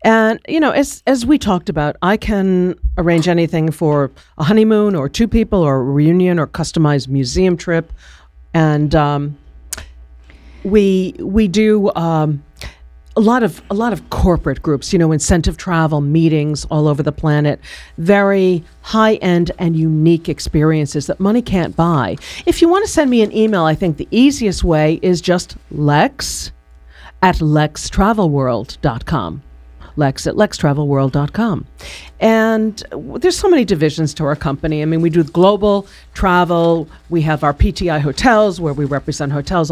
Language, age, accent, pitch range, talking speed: English, 50-69, American, 150-205 Hz, 155 wpm